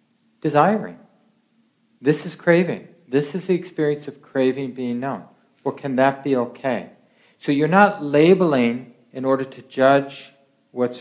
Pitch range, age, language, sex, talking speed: 120-155 Hz, 50-69, English, male, 140 wpm